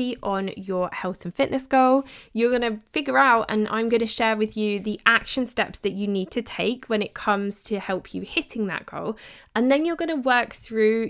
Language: English